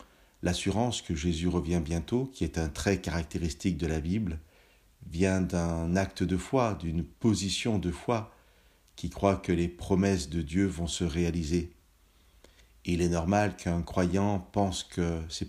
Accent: French